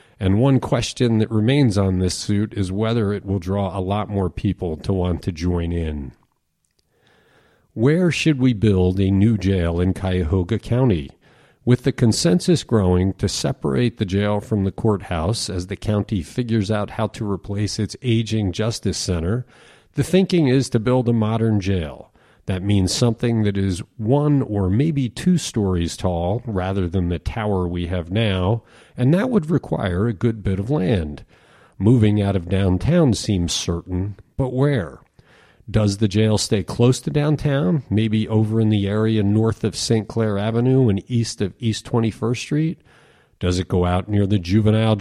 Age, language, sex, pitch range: 40-59, English, male, 95-120 Hz